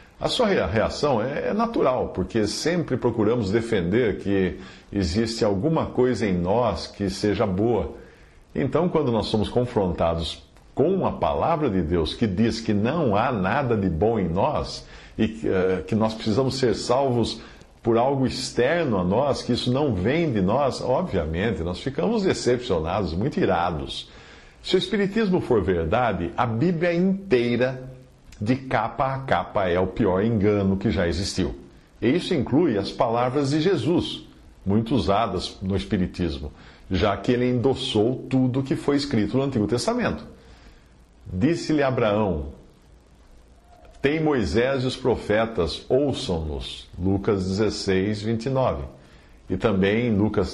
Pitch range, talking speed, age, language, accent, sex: 95-130 Hz, 140 wpm, 50-69, Portuguese, Brazilian, male